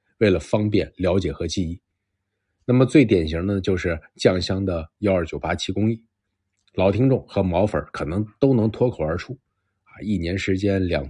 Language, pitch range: Chinese, 85-110 Hz